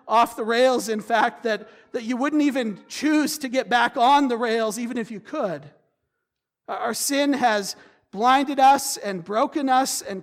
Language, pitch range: English, 200-265 Hz